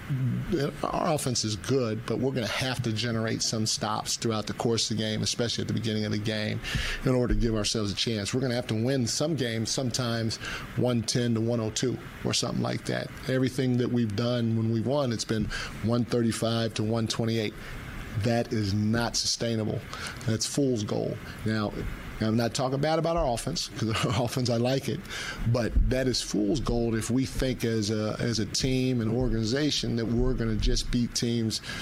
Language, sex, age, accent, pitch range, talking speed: English, male, 40-59, American, 110-125 Hz, 195 wpm